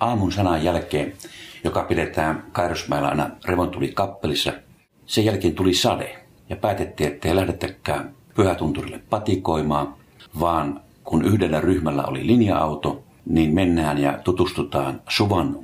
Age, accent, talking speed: 50-69, native, 120 wpm